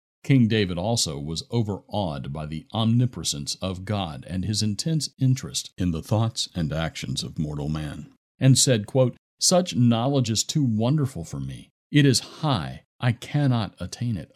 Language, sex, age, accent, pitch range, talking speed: English, male, 50-69, American, 85-125 Hz, 165 wpm